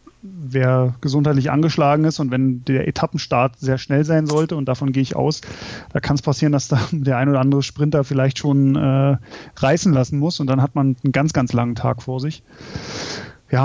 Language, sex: German, male